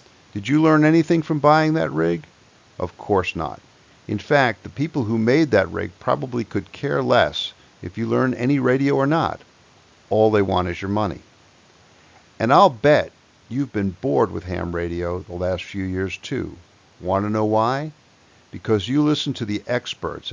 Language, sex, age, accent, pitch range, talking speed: English, male, 50-69, American, 95-130 Hz, 175 wpm